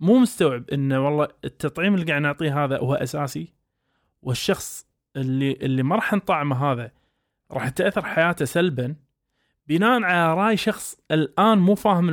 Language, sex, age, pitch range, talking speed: Arabic, male, 20-39, 135-180 Hz, 145 wpm